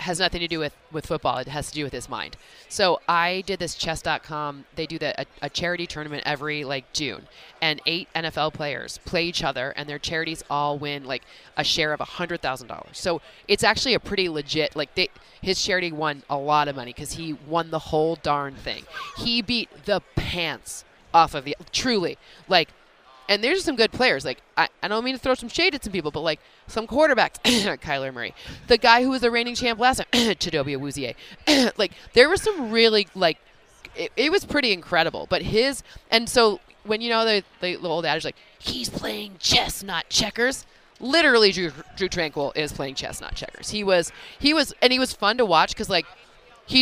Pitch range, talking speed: 150-225 Hz, 210 wpm